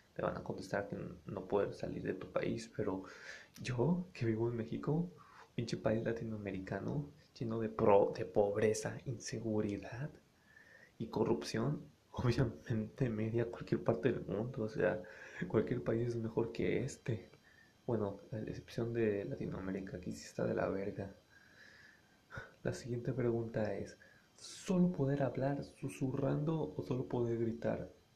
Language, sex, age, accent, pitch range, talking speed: Spanish, male, 20-39, Mexican, 110-135 Hz, 135 wpm